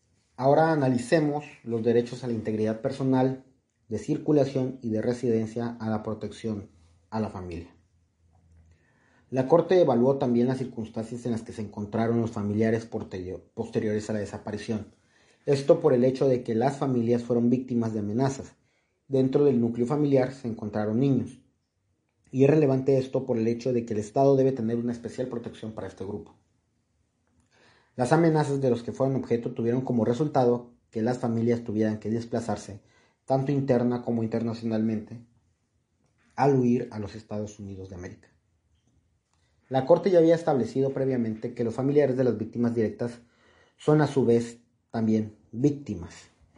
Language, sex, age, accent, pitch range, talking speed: Spanish, male, 40-59, Mexican, 110-130 Hz, 155 wpm